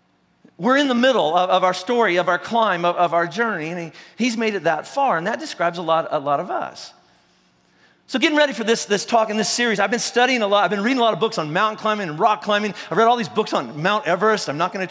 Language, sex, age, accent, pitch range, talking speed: English, male, 40-59, American, 185-250 Hz, 275 wpm